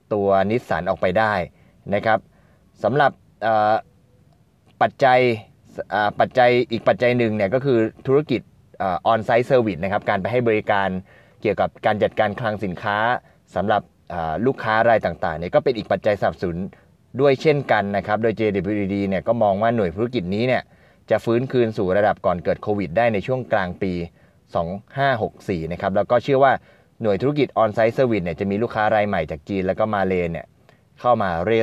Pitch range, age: 100-125 Hz, 20-39